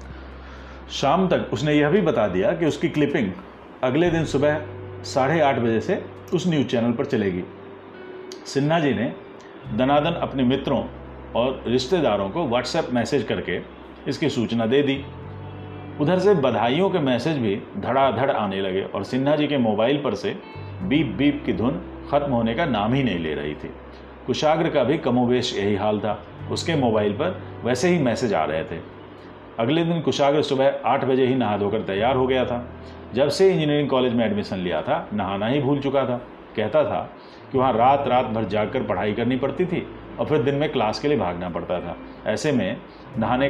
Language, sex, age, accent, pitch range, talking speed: Hindi, male, 40-59, native, 105-145 Hz, 185 wpm